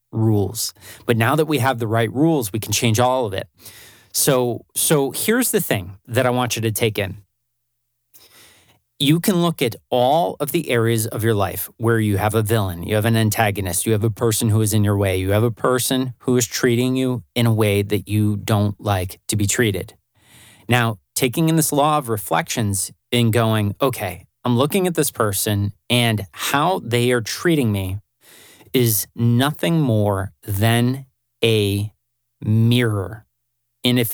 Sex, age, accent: male, 30-49, American